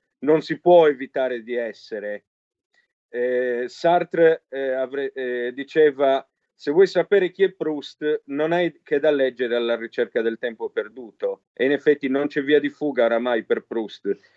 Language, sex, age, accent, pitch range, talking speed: Italian, male, 40-59, native, 125-170 Hz, 165 wpm